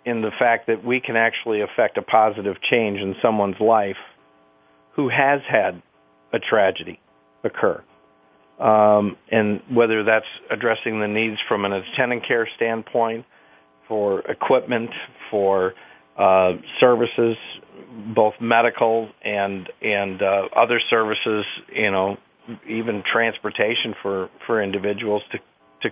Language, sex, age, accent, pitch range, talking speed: English, male, 50-69, American, 90-115 Hz, 125 wpm